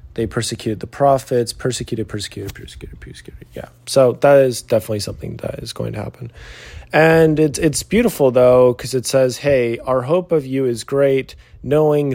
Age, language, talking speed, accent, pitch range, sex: 30-49, English, 175 wpm, American, 105-125 Hz, male